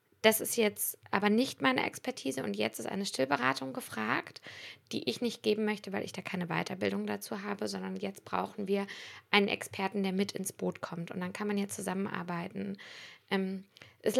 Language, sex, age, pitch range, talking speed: German, female, 20-39, 190-220 Hz, 185 wpm